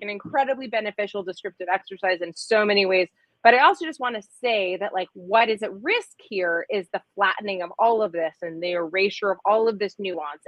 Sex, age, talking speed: female, 30-49, 220 wpm